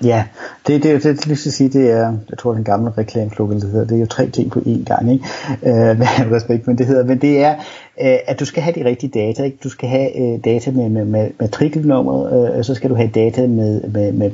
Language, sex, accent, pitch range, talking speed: Danish, male, native, 115-140 Hz, 240 wpm